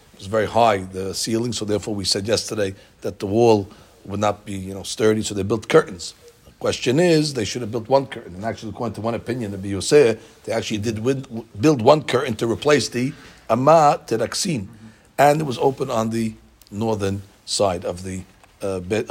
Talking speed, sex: 195 wpm, male